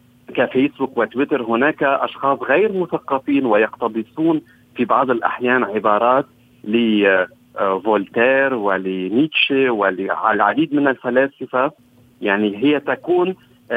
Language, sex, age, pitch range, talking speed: Arabic, male, 40-59, 115-145 Hz, 85 wpm